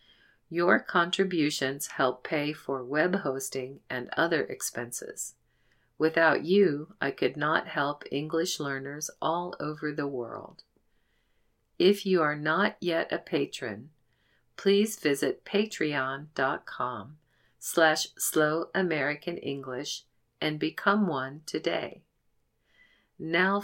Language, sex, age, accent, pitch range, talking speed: English, female, 50-69, American, 140-185 Hz, 100 wpm